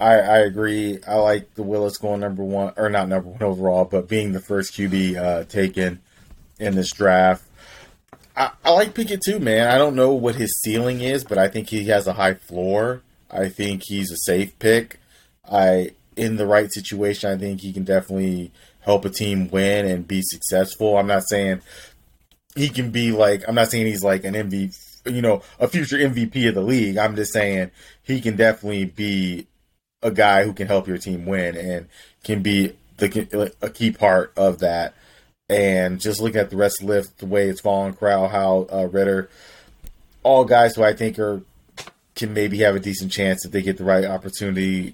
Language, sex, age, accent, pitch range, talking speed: English, male, 30-49, American, 95-105 Hz, 200 wpm